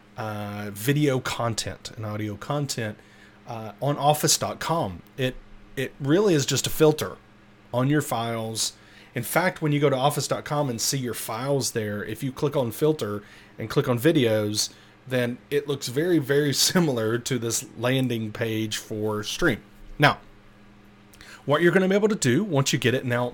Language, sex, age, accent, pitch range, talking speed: English, male, 30-49, American, 105-145 Hz, 170 wpm